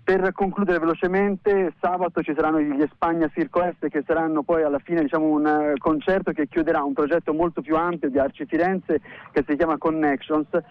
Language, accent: Italian, native